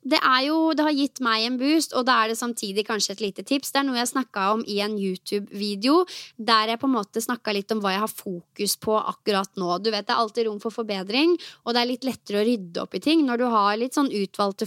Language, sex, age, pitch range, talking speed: English, female, 20-39, 205-255 Hz, 265 wpm